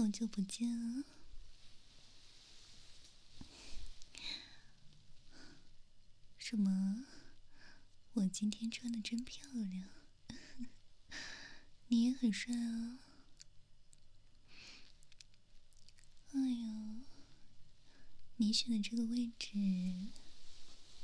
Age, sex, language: 20-39, female, Chinese